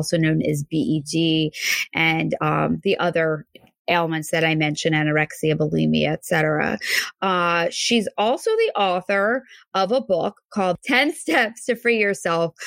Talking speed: 140 wpm